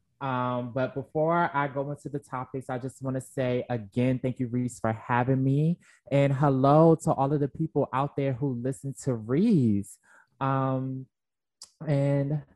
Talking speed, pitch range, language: 165 wpm, 115-140 Hz, English